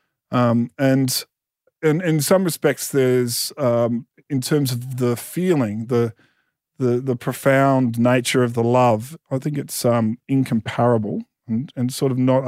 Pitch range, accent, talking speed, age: 120-135 Hz, Australian, 150 wpm, 50-69